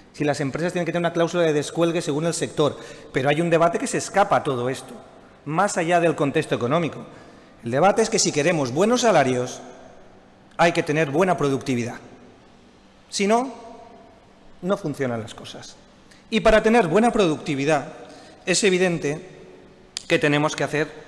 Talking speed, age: 165 wpm, 40-59